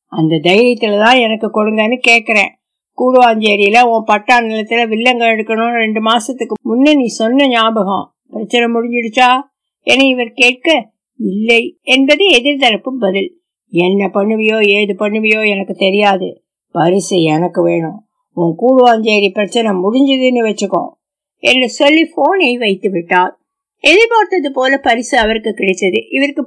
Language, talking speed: Tamil, 55 wpm